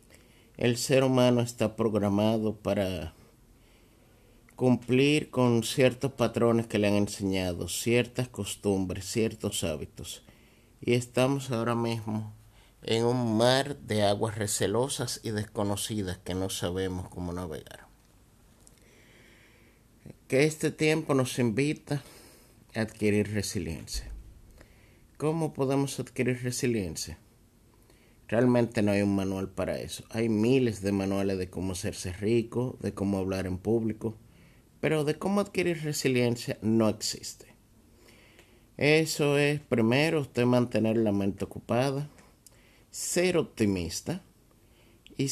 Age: 50-69